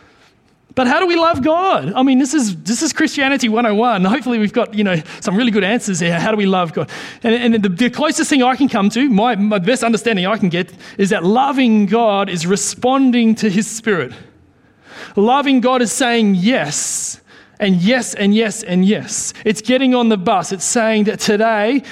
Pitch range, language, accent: 190-235 Hz, English, Australian